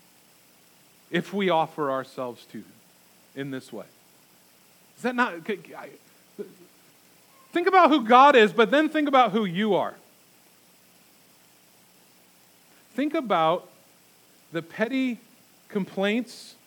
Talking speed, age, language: 105 wpm, 40-59, English